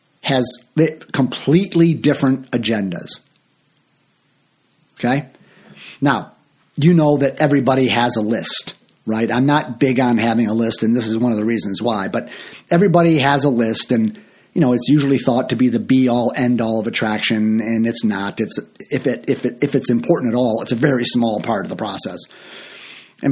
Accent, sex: American, male